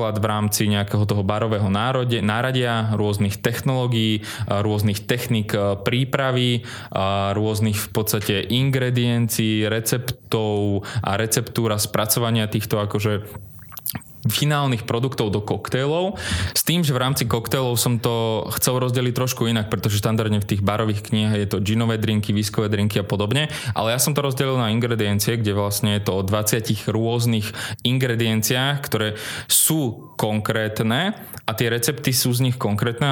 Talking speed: 140 wpm